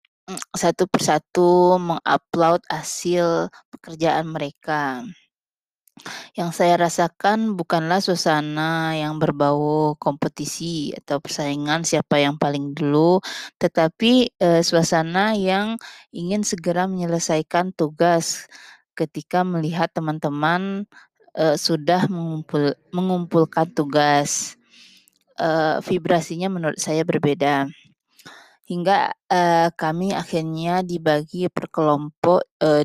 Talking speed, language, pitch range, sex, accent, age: 90 wpm, Indonesian, 150-180 Hz, female, native, 20-39